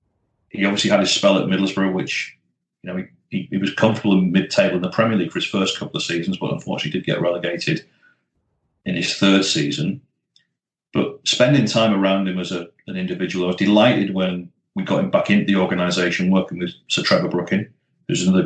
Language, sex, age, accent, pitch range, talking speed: English, male, 30-49, British, 90-105 Hz, 205 wpm